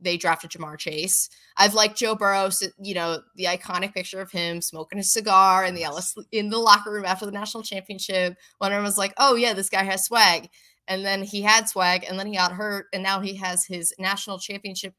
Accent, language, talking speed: American, English, 225 wpm